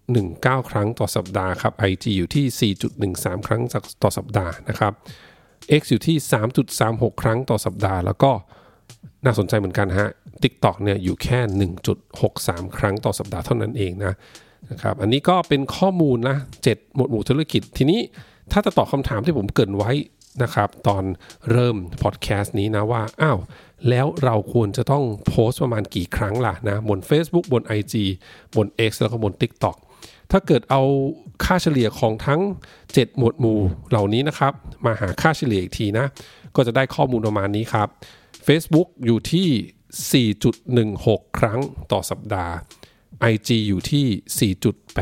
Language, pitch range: Thai, 105-135 Hz